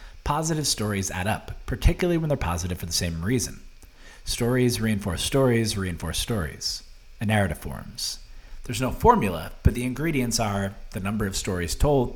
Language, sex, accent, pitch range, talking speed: English, male, American, 95-125 Hz, 160 wpm